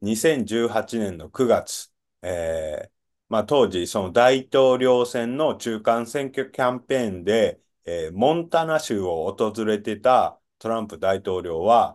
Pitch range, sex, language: 105-135 Hz, male, Japanese